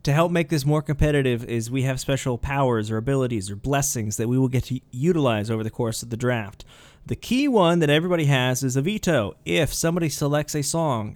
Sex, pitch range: male, 115-150 Hz